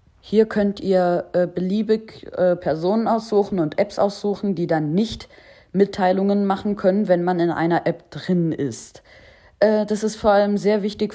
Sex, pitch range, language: female, 160-200 Hz, German